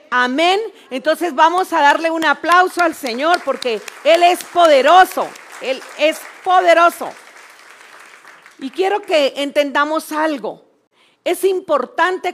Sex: female